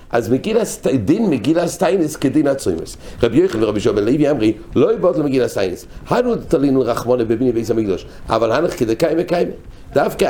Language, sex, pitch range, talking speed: English, male, 105-155 Hz, 155 wpm